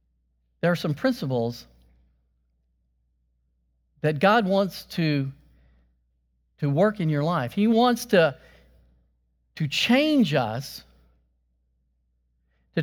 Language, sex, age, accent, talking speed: English, male, 50-69, American, 95 wpm